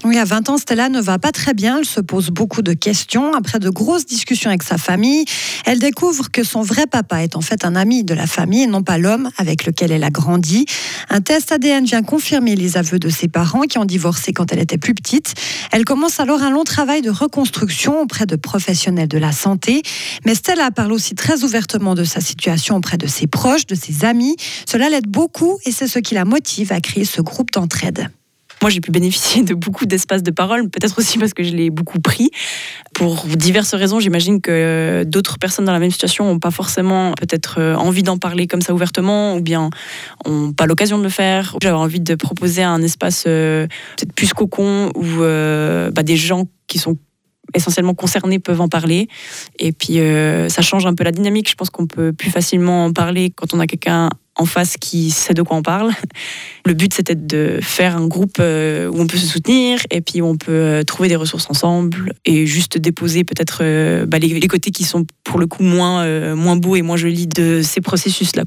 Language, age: French, 40-59